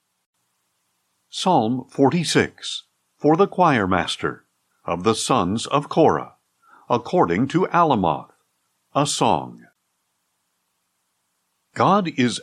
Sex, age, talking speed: male, 60-79, 85 wpm